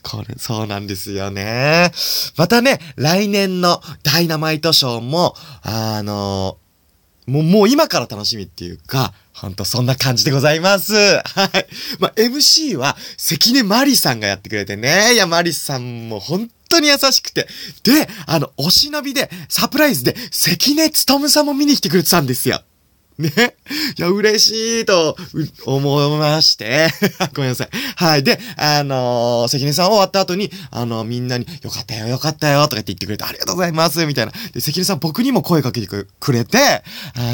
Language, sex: Japanese, male